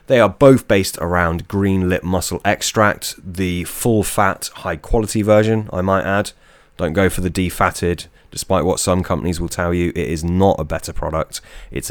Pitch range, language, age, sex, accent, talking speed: 85-100 Hz, English, 20-39, male, British, 175 wpm